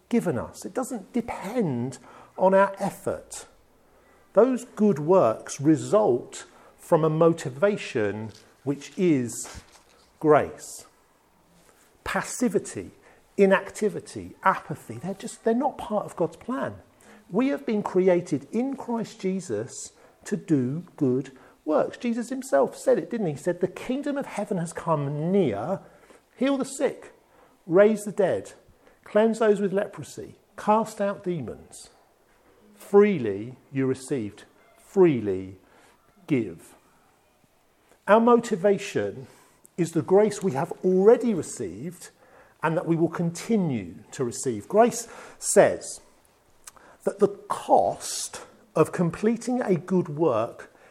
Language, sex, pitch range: English, male, 155-220 Hz